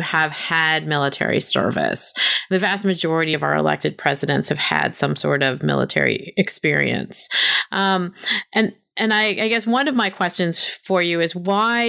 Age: 30-49